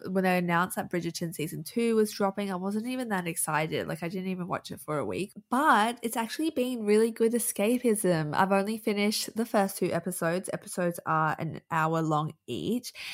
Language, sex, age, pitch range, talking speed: English, female, 20-39, 165-205 Hz, 195 wpm